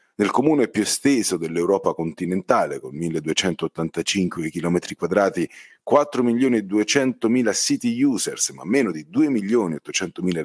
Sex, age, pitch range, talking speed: male, 40-59, 90-120 Hz, 90 wpm